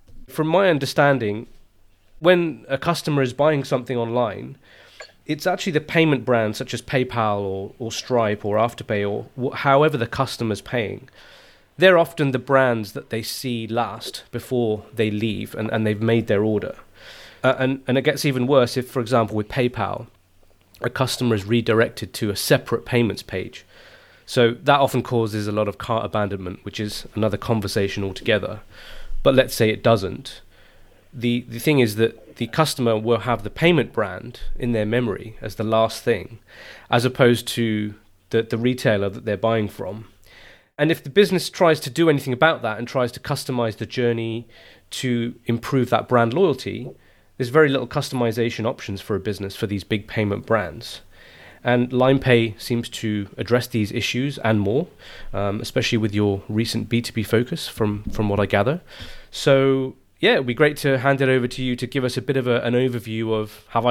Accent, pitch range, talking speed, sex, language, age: British, 110-130 Hz, 180 wpm, male, English, 30-49